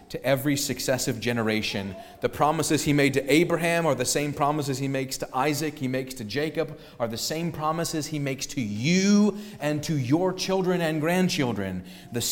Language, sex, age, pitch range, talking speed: English, male, 30-49, 130-170 Hz, 180 wpm